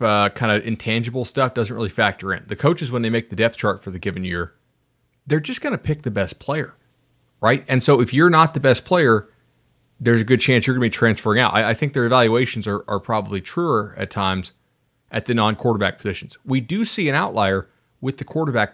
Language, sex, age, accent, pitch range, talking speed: English, male, 30-49, American, 100-130 Hz, 225 wpm